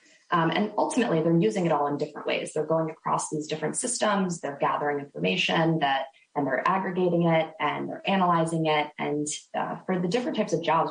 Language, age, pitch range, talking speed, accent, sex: English, 20-39, 150-180 Hz, 200 wpm, American, female